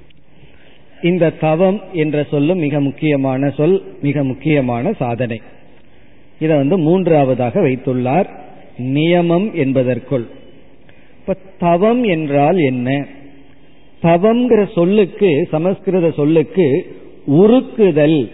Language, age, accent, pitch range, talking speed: Tamil, 40-59, native, 140-185 Hz, 50 wpm